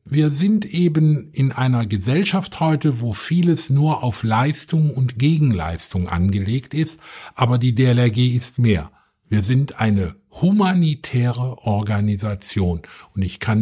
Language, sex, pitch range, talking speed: German, male, 105-150 Hz, 130 wpm